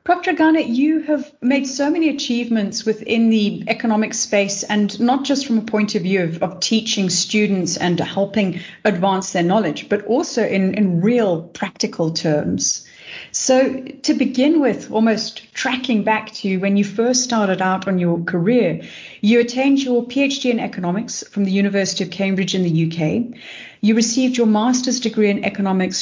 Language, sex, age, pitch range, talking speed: English, female, 40-59, 185-240 Hz, 170 wpm